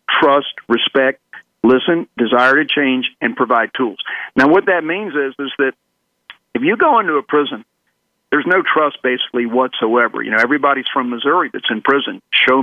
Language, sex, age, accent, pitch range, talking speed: English, male, 50-69, American, 120-150 Hz, 170 wpm